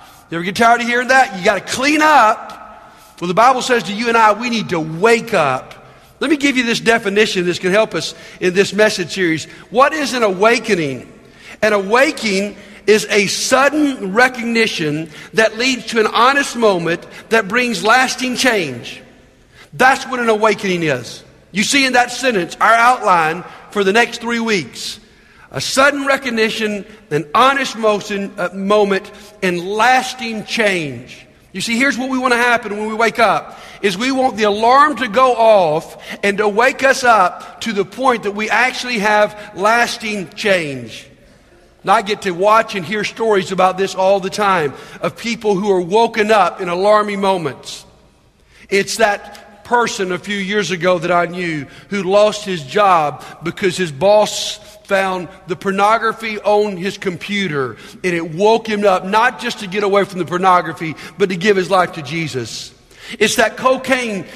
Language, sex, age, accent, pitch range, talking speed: English, male, 50-69, American, 190-230 Hz, 175 wpm